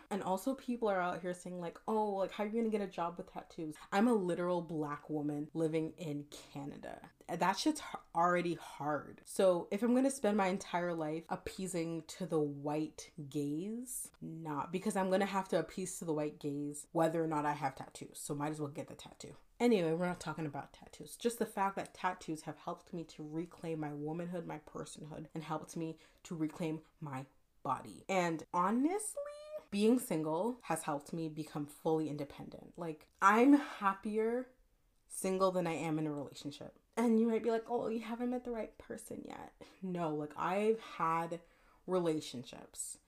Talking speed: 185 wpm